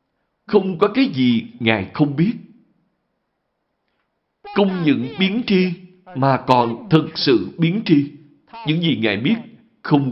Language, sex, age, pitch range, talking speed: Vietnamese, male, 60-79, 120-175 Hz, 130 wpm